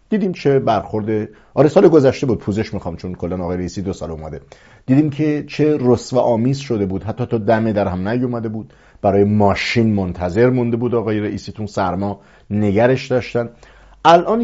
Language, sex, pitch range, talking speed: English, male, 95-140 Hz, 180 wpm